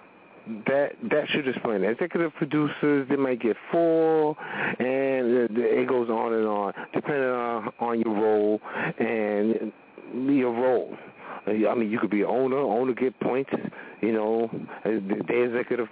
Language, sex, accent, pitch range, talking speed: English, male, American, 115-135 Hz, 155 wpm